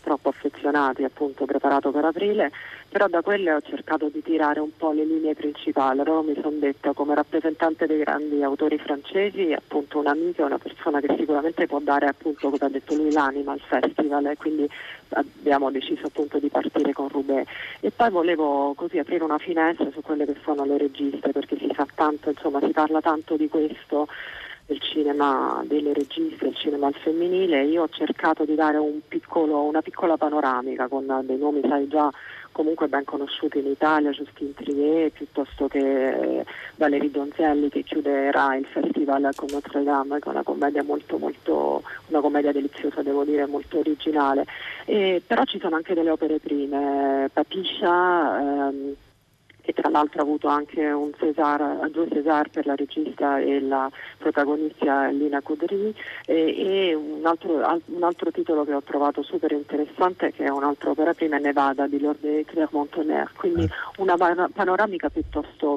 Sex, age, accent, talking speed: male, 40-59, native, 170 wpm